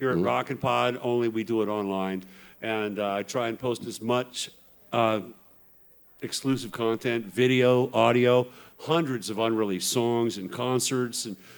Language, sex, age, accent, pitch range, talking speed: English, male, 50-69, American, 110-130 Hz, 150 wpm